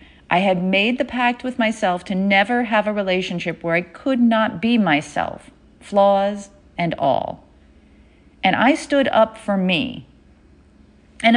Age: 40-59